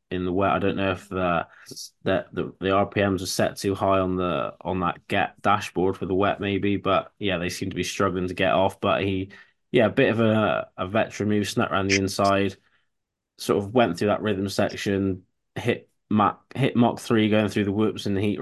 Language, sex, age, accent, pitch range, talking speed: English, male, 20-39, British, 95-105 Hz, 225 wpm